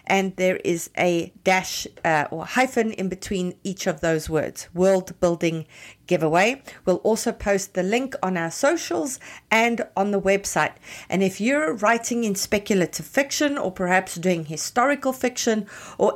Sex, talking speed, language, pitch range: female, 155 wpm, English, 180-230 Hz